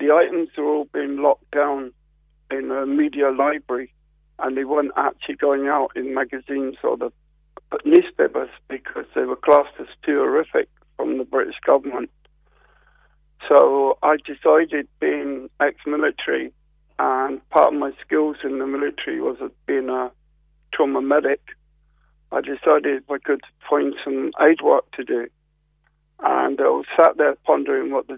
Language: English